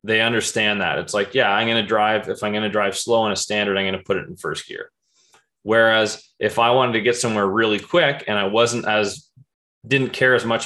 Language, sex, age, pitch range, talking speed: English, male, 20-39, 105-130 Hz, 250 wpm